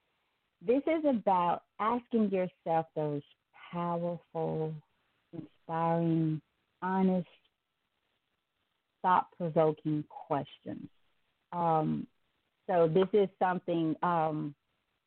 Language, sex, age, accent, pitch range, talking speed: English, female, 40-59, American, 155-180 Hz, 70 wpm